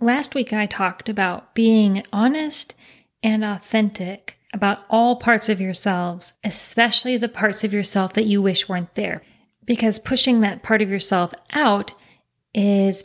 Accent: American